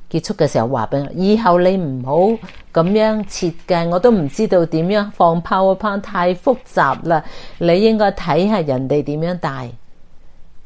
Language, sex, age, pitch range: Chinese, female, 50-69, 140-180 Hz